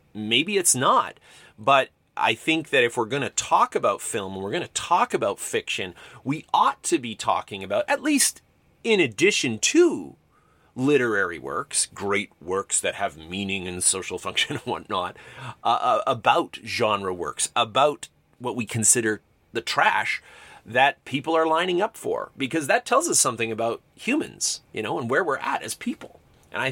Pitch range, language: 110-160 Hz, English